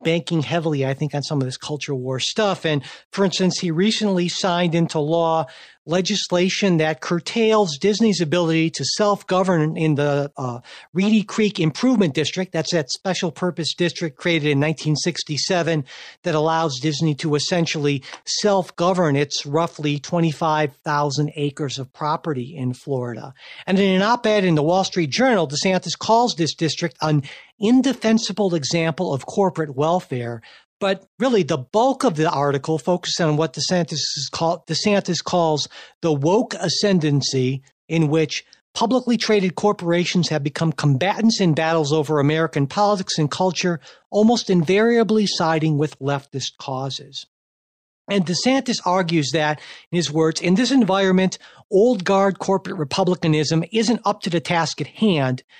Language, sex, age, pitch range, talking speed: English, male, 50-69, 150-190 Hz, 145 wpm